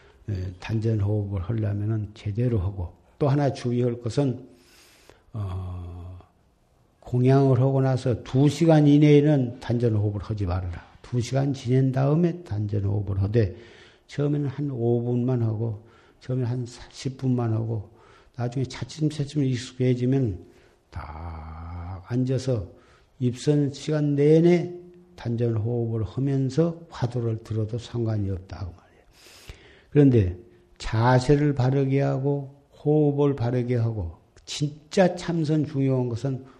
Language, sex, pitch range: Korean, male, 105-140 Hz